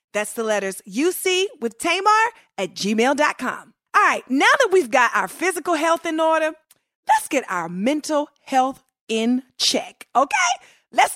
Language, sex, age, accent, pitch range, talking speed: English, female, 40-59, American, 220-335 Hz, 150 wpm